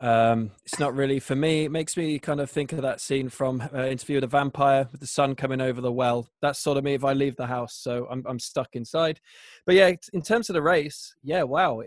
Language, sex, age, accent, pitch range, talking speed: English, male, 20-39, British, 130-160 Hz, 260 wpm